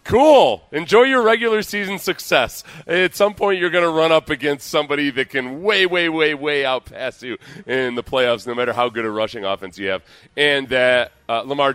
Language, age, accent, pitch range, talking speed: English, 30-49, American, 115-145 Hz, 205 wpm